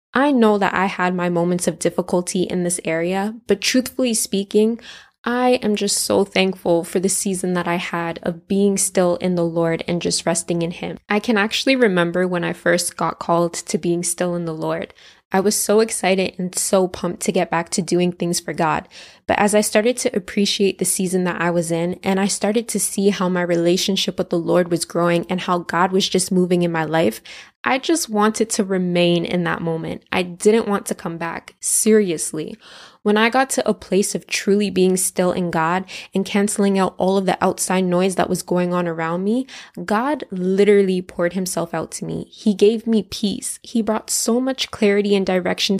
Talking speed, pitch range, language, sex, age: 210 wpm, 175-210 Hz, English, female, 10-29